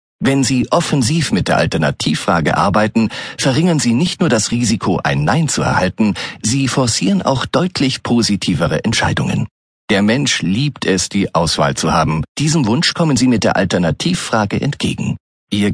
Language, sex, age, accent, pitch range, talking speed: German, male, 40-59, German, 105-145 Hz, 155 wpm